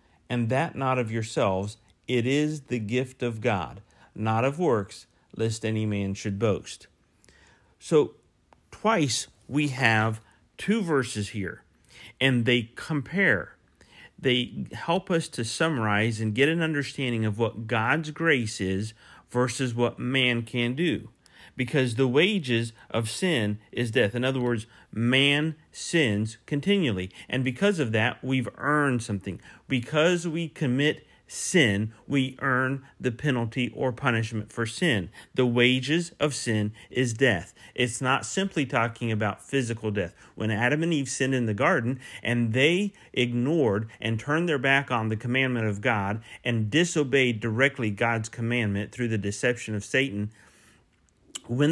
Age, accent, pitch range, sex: 50-69, American, 110-140 Hz, male